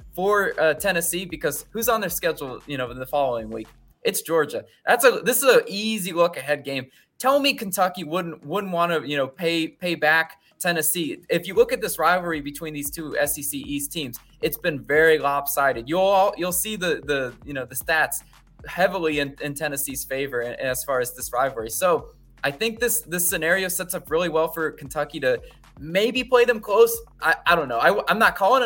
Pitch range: 150-200 Hz